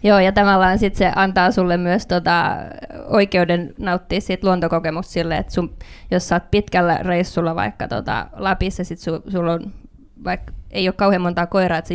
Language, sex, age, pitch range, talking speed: Finnish, female, 20-39, 170-200 Hz, 155 wpm